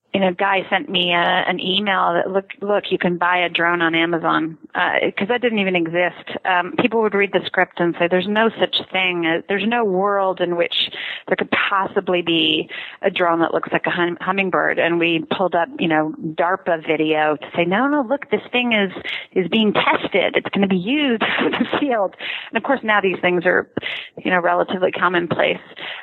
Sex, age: female, 30-49